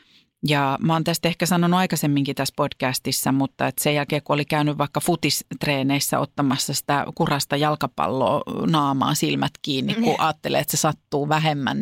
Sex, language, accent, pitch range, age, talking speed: female, Finnish, native, 140-190 Hz, 40-59, 155 wpm